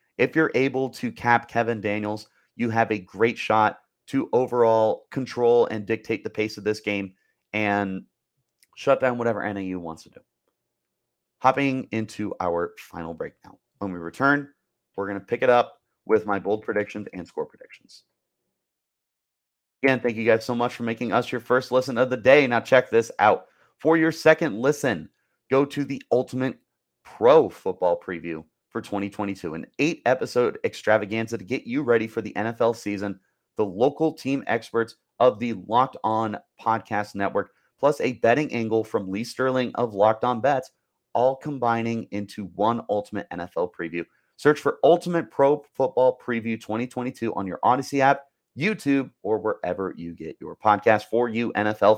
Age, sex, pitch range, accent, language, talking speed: 30-49, male, 105-130 Hz, American, English, 165 wpm